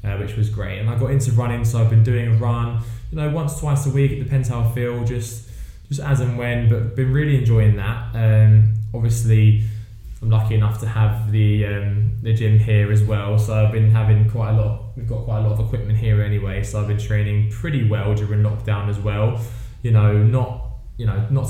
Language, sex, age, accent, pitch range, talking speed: English, male, 10-29, British, 105-115 Hz, 230 wpm